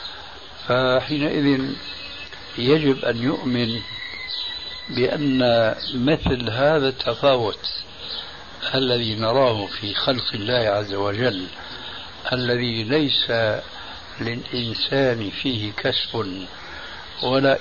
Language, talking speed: Arabic, 70 wpm